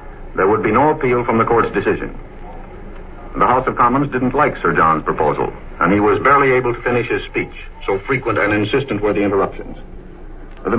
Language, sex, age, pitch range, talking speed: English, male, 60-79, 110-140 Hz, 195 wpm